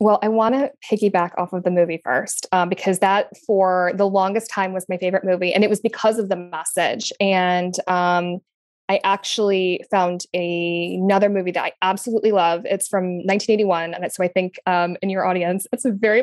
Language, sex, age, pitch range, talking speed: English, female, 20-39, 185-210 Hz, 195 wpm